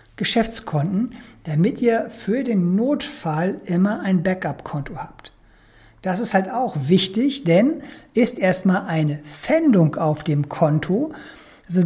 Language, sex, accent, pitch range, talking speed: German, male, German, 165-220 Hz, 120 wpm